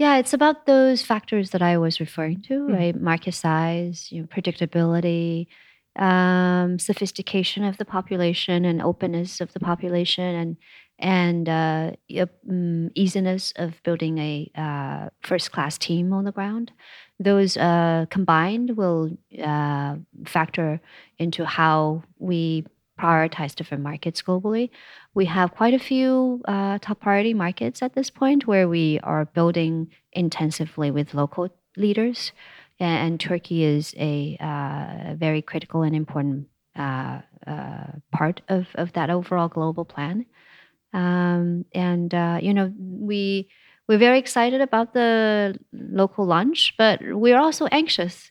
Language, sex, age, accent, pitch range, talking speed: Turkish, female, 30-49, American, 165-200 Hz, 135 wpm